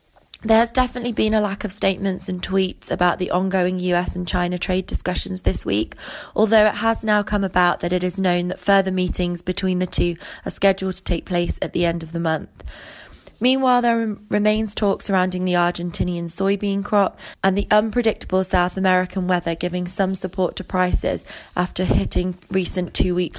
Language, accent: English, British